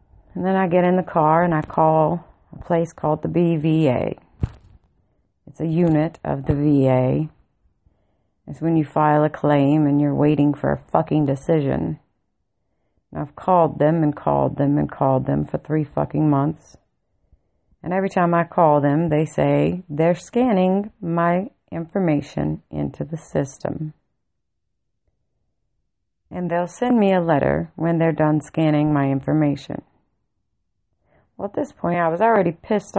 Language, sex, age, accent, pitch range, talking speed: English, female, 40-59, American, 145-185 Hz, 150 wpm